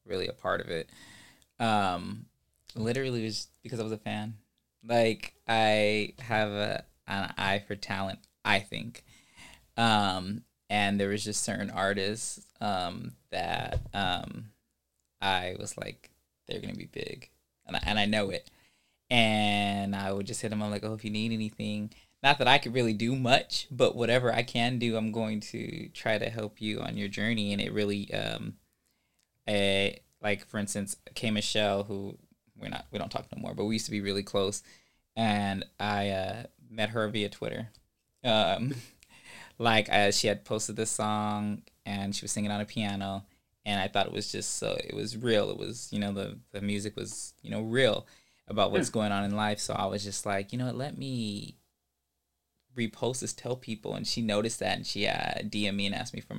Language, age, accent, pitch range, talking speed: English, 20-39, American, 100-110 Hz, 195 wpm